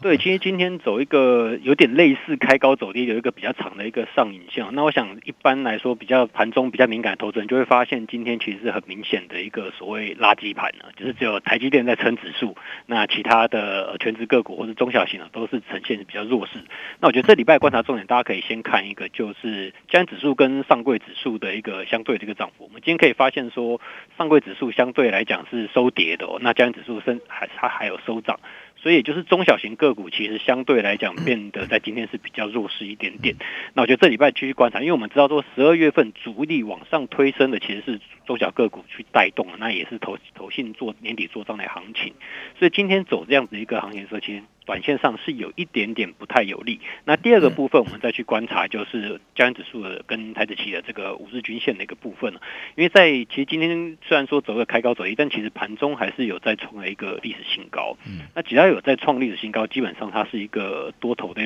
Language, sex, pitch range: Chinese, male, 110-145 Hz